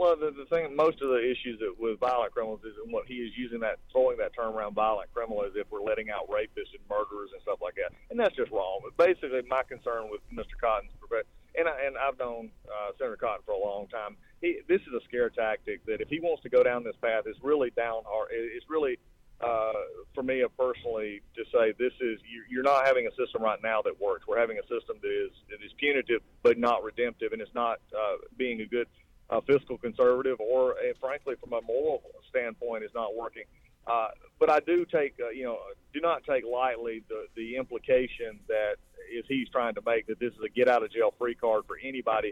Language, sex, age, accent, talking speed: English, male, 40-59, American, 225 wpm